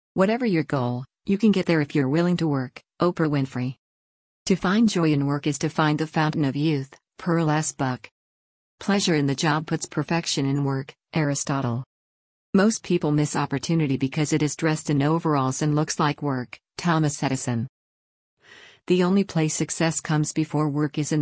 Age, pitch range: 50-69, 135-165 Hz